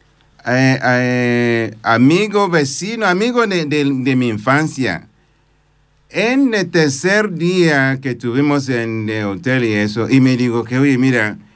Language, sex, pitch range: Spanish, male, 120-165 Hz